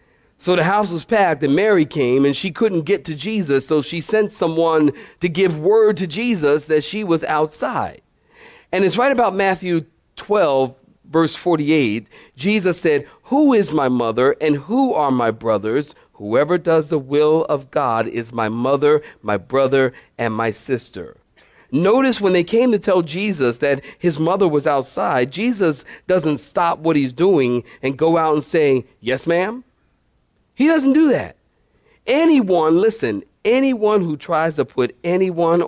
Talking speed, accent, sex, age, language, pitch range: 165 wpm, American, male, 40-59, English, 135-195 Hz